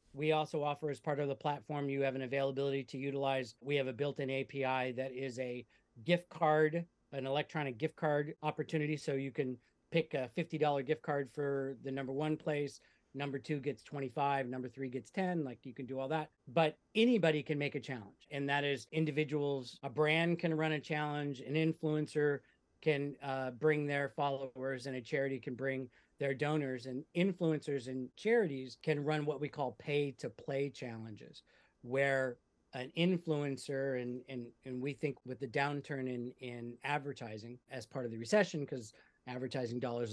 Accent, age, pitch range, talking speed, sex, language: American, 40-59, 130-150 Hz, 180 wpm, male, English